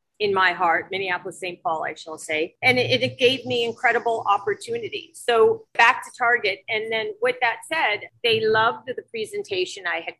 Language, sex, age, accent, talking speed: English, female, 40-59, American, 180 wpm